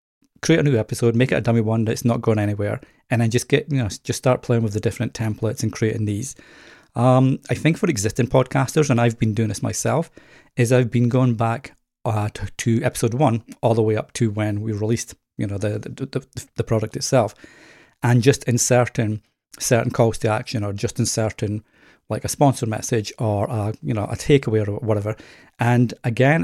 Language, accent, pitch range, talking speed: English, British, 110-130 Hz, 205 wpm